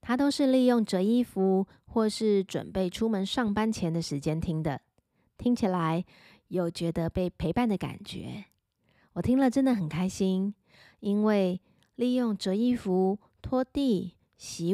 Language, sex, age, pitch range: Chinese, female, 20-39, 180-230 Hz